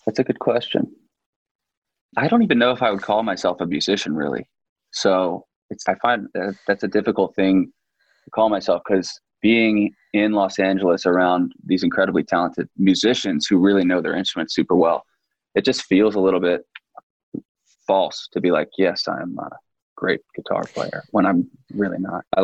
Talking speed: 175 wpm